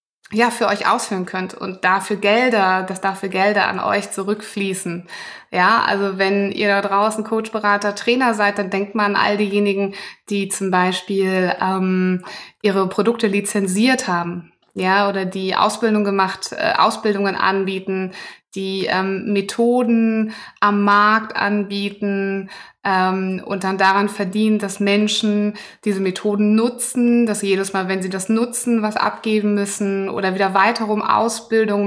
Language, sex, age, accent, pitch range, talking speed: German, female, 20-39, German, 190-220 Hz, 145 wpm